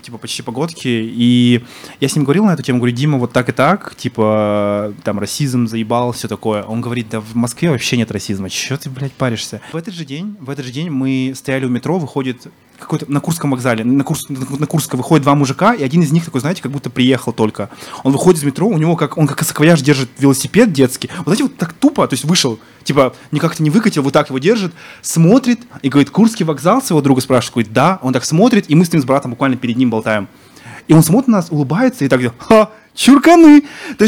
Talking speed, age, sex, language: 230 wpm, 20-39, male, Russian